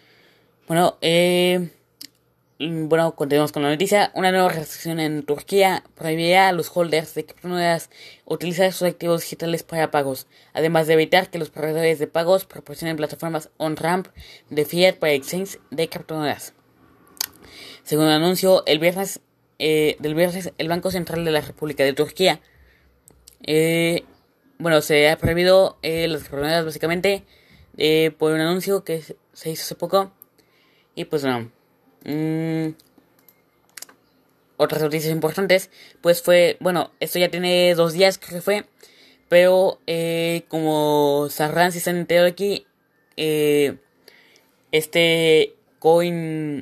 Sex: female